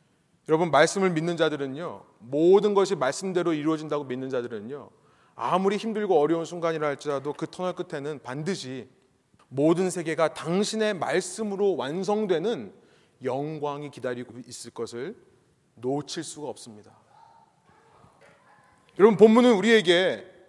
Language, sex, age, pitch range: Korean, male, 30-49, 150-220 Hz